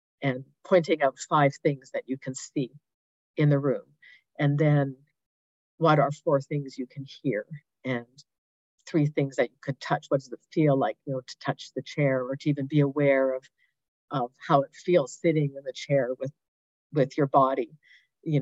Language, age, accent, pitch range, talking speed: English, 50-69, American, 135-165 Hz, 190 wpm